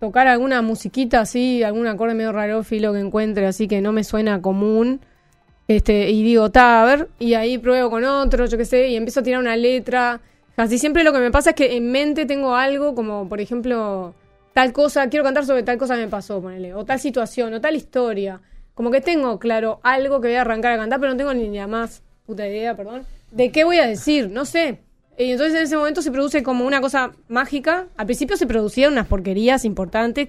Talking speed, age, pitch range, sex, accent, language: 230 wpm, 20-39, 215-265 Hz, female, Argentinian, Spanish